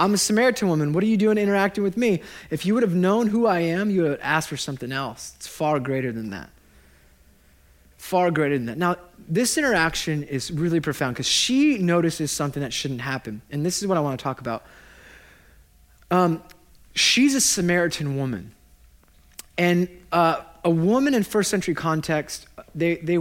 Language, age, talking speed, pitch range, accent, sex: English, 20-39, 185 wpm, 135-180 Hz, American, male